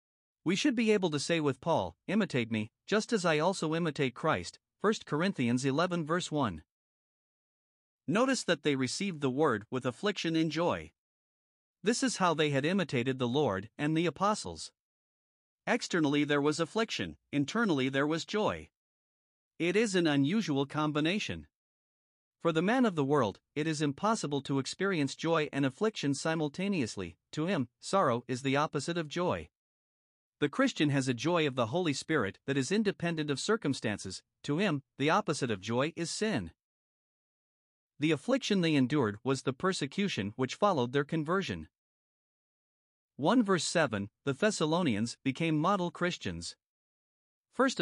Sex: male